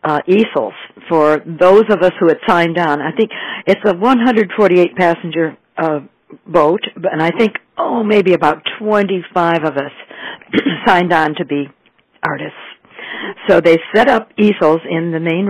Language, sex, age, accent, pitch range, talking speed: English, female, 60-79, American, 155-195 Hz, 155 wpm